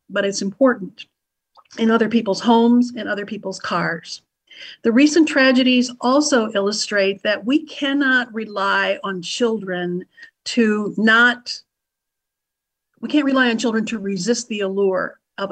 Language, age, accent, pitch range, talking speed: English, 50-69, American, 200-255 Hz, 130 wpm